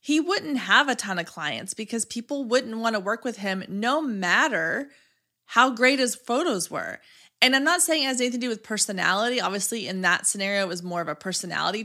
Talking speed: 220 wpm